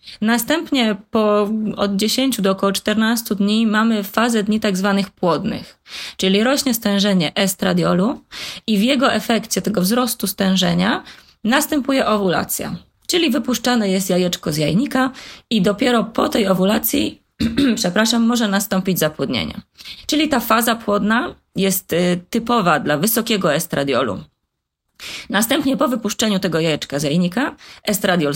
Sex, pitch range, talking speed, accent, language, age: female, 180-235 Hz, 125 wpm, native, Polish, 20-39